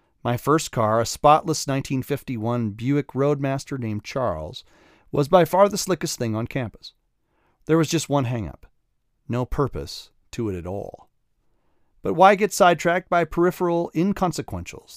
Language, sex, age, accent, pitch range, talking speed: English, male, 40-59, American, 110-145 Hz, 145 wpm